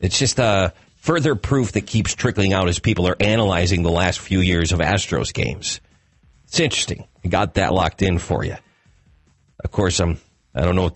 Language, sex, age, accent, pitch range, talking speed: English, male, 40-59, American, 85-105 Hz, 195 wpm